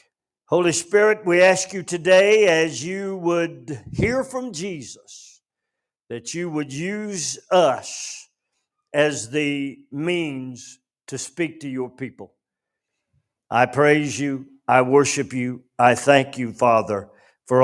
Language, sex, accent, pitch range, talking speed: English, male, American, 125-175 Hz, 125 wpm